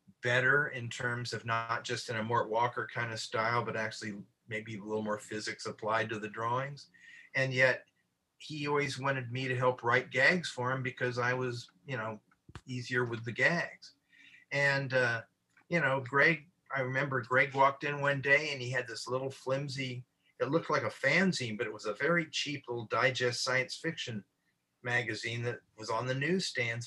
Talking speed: 190 wpm